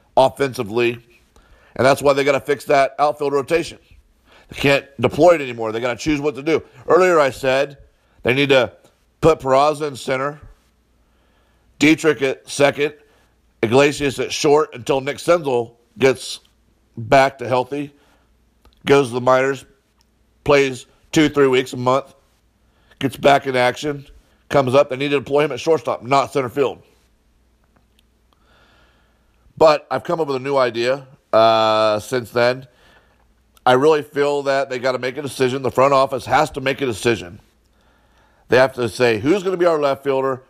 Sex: male